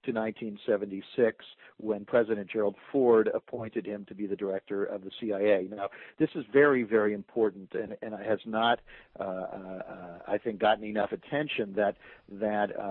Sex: male